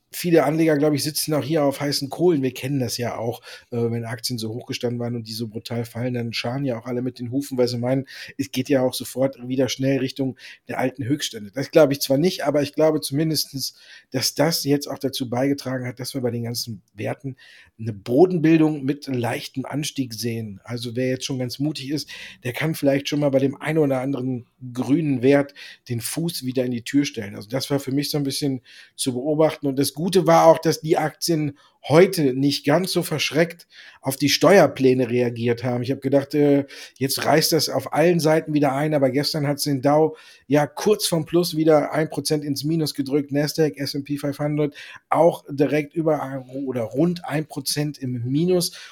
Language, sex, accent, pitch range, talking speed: German, male, German, 125-155 Hz, 210 wpm